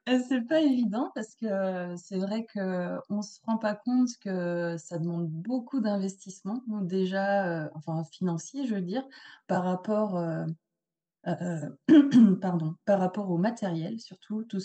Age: 30-49